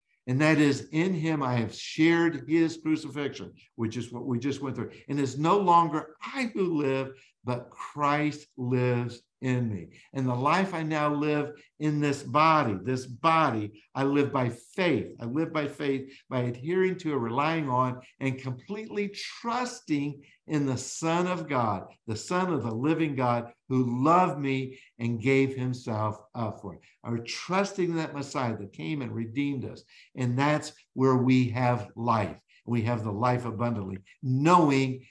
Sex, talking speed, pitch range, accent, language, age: male, 170 wpm, 115-150 Hz, American, English, 60-79